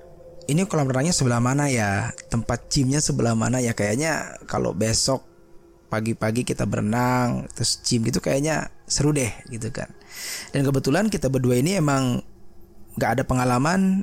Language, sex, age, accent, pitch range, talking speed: Indonesian, male, 20-39, native, 110-140 Hz, 145 wpm